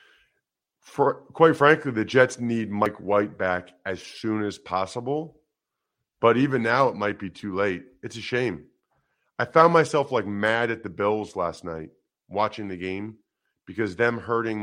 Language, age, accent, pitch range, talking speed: English, 40-59, American, 95-125 Hz, 165 wpm